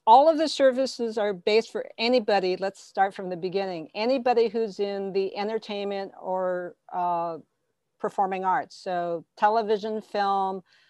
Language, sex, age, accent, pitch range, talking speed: English, female, 50-69, American, 180-215 Hz, 140 wpm